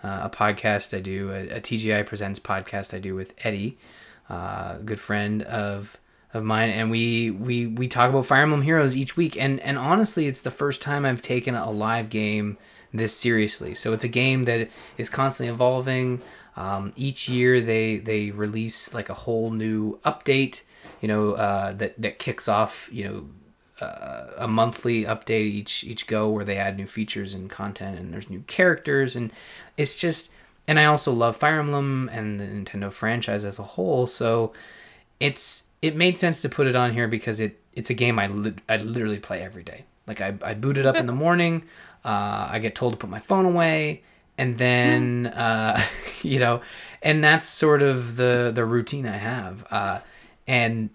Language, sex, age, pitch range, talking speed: English, male, 20-39, 105-135 Hz, 190 wpm